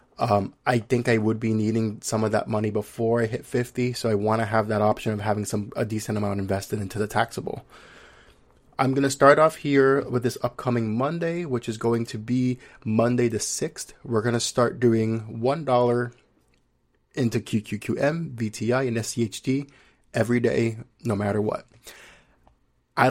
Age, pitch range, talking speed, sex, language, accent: 20-39, 110-135 Hz, 175 wpm, male, English, American